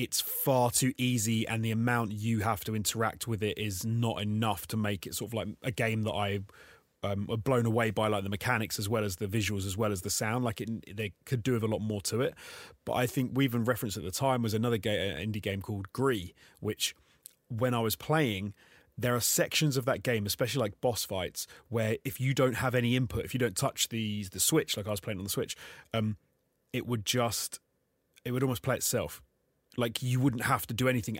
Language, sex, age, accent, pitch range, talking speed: English, male, 30-49, British, 105-125 Hz, 235 wpm